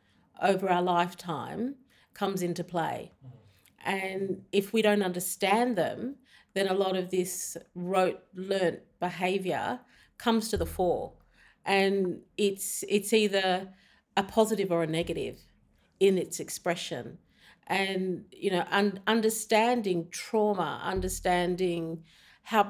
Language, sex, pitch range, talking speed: English, female, 175-205 Hz, 115 wpm